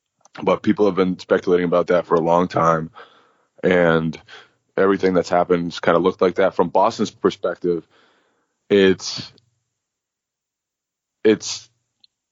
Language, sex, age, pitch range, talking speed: English, male, 20-39, 90-110 Hz, 120 wpm